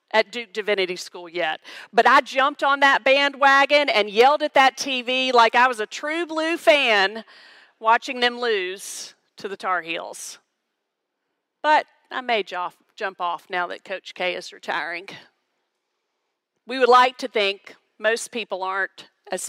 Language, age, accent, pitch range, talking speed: English, 40-59, American, 195-280 Hz, 155 wpm